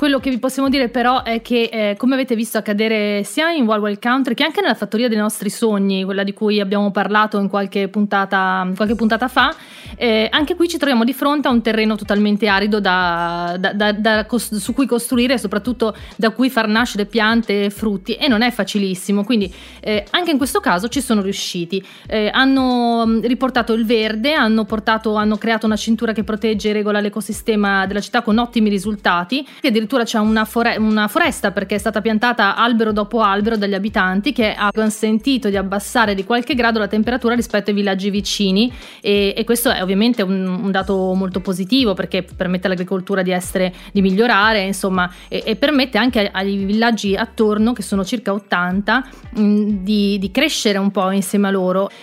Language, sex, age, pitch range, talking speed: Italian, female, 30-49, 200-235 Hz, 195 wpm